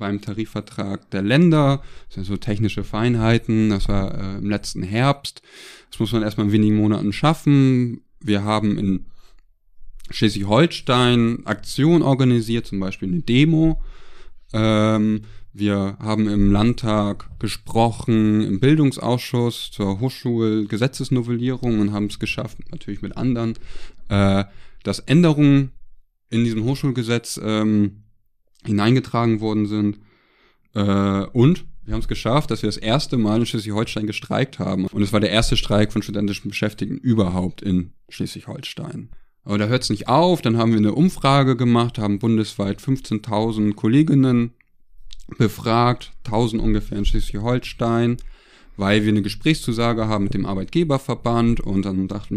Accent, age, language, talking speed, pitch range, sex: German, 20-39, German, 135 wpm, 105-125 Hz, male